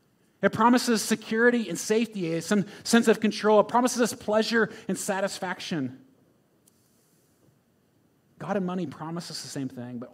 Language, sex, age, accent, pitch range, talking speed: English, male, 30-49, American, 125-185 Hz, 135 wpm